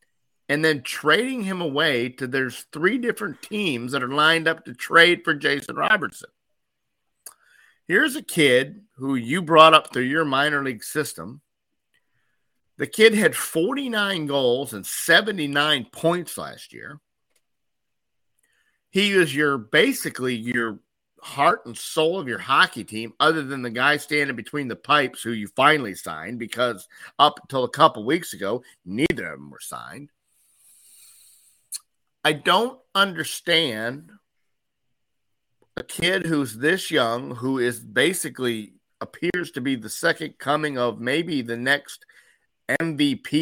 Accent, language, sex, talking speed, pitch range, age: American, English, male, 135 wpm, 125-170 Hz, 50-69